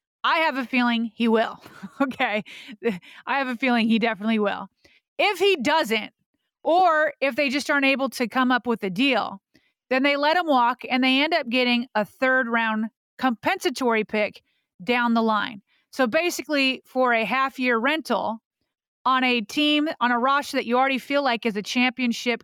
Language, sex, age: English, female, 30-49